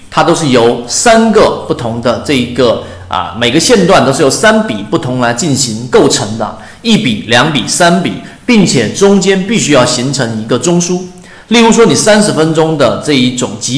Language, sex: Chinese, male